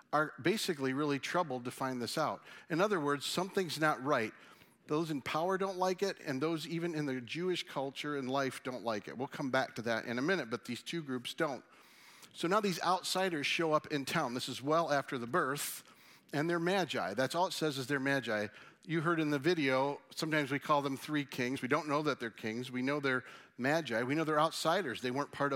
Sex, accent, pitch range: male, American, 130-165 Hz